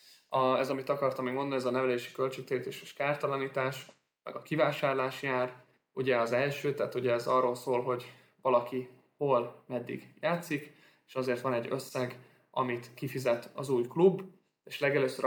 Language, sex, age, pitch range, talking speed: Hungarian, male, 20-39, 125-145 Hz, 160 wpm